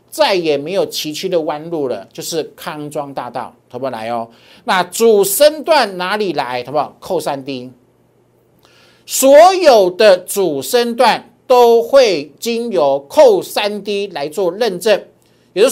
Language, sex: Chinese, male